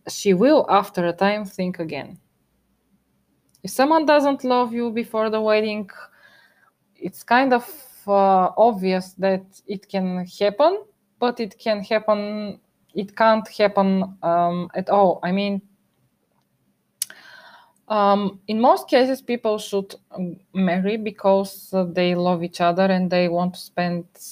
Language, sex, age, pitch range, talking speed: English, female, 20-39, 180-220 Hz, 130 wpm